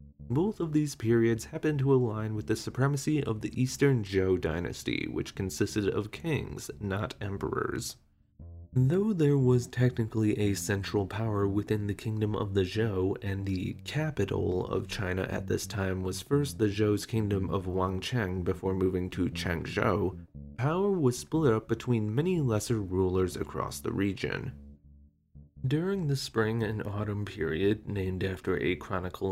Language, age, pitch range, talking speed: English, 30-49, 95-120 Hz, 150 wpm